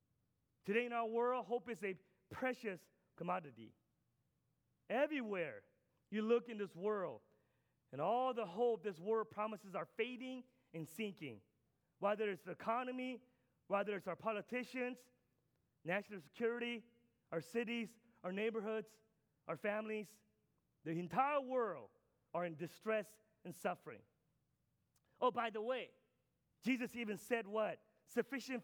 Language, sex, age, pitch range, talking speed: English, male, 30-49, 195-245 Hz, 125 wpm